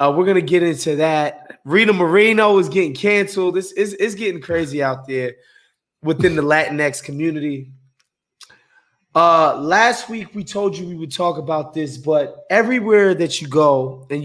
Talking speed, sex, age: 160 wpm, male, 20-39